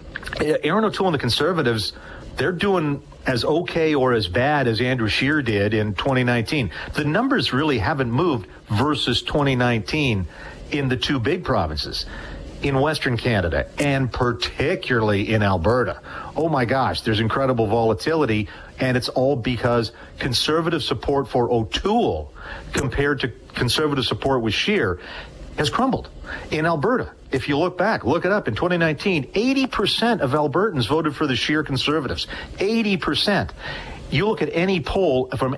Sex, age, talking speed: male, 40-59, 145 wpm